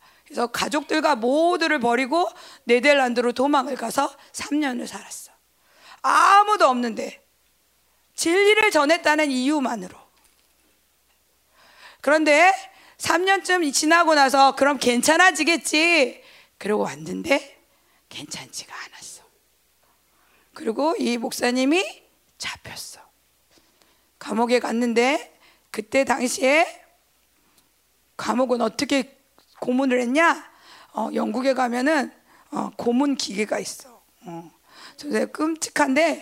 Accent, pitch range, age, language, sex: native, 245-315 Hz, 40-59, Korean, female